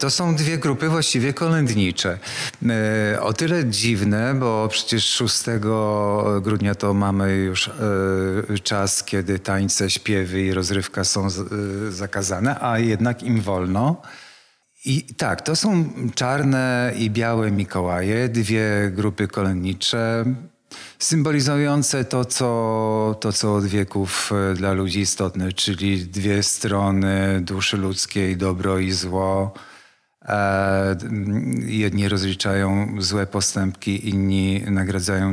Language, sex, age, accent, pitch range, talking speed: Polish, male, 40-59, native, 95-115 Hz, 105 wpm